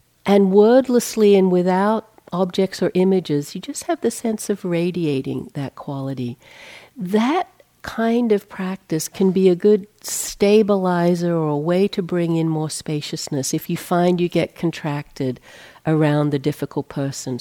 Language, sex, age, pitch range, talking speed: English, female, 60-79, 150-185 Hz, 150 wpm